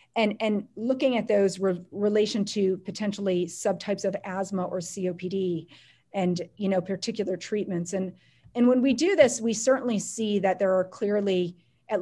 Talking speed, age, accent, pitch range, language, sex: 165 wpm, 40-59, American, 185-220 Hz, English, female